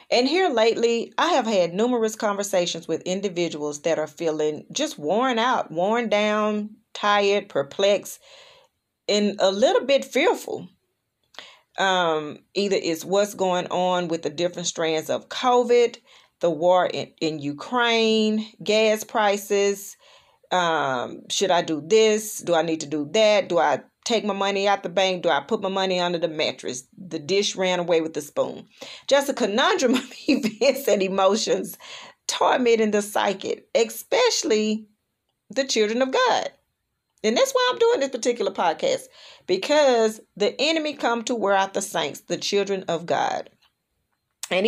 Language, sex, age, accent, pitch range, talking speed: English, female, 40-59, American, 180-245 Hz, 155 wpm